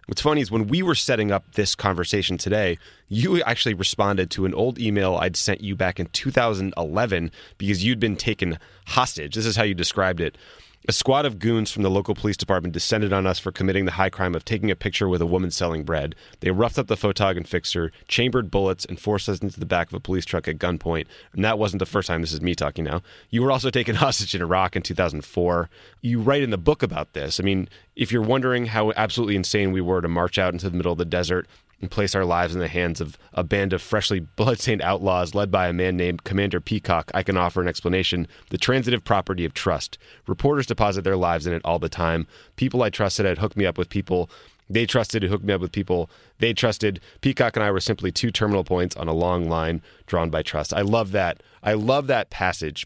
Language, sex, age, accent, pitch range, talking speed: English, male, 30-49, American, 90-110 Hz, 235 wpm